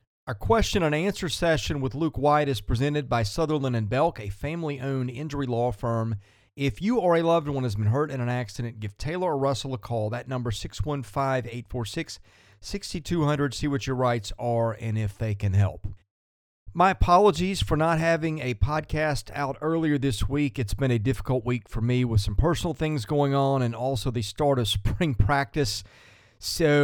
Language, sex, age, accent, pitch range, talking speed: English, male, 40-59, American, 115-150 Hz, 185 wpm